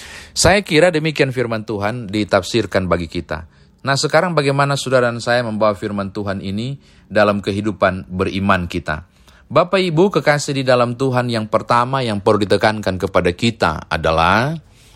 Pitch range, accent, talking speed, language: 90-135 Hz, native, 145 wpm, Indonesian